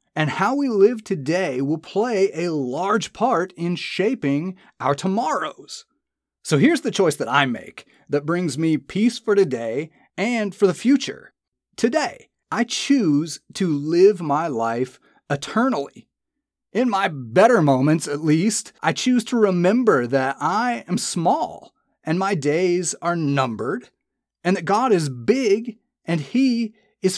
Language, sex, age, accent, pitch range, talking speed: English, male, 30-49, American, 150-225 Hz, 145 wpm